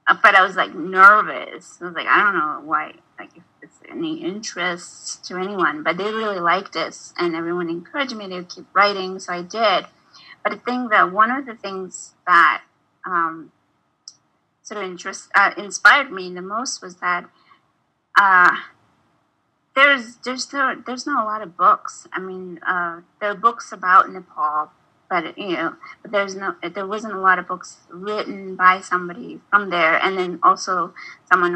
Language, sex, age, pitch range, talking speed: English, female, 30-49, 180-225 Hz, 175 wpm